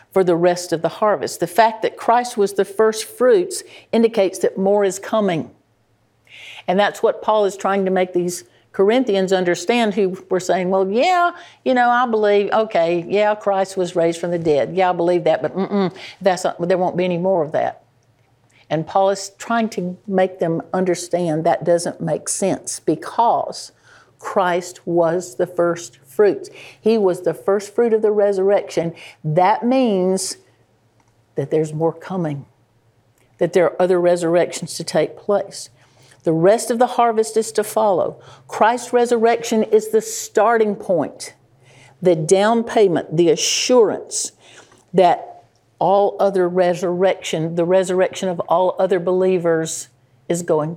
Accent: American